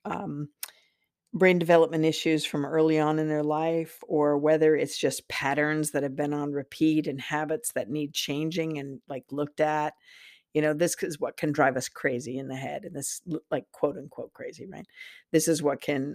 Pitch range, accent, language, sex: 140-160 Hz, American, English, female